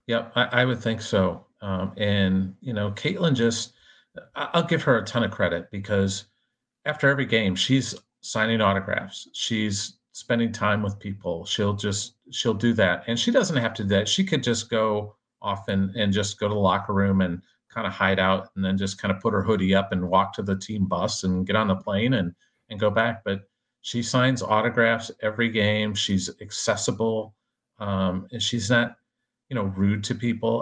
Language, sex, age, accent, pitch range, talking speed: English, male, 40-59, American, 100-120 Hz, 200 wpm